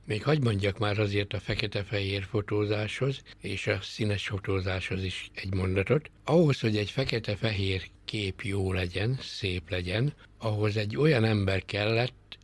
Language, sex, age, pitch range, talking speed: Hungarian, male, 60-79, 100-120 Hz, 140 wpm